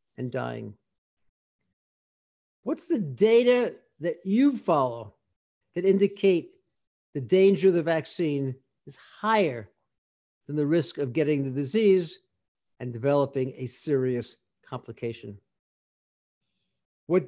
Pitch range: 135-200 Hz